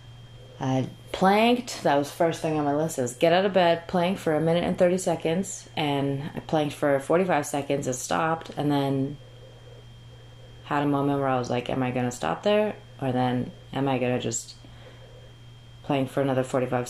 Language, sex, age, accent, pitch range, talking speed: English, female, 30-49, American, 125-155 Hz, 190 wpm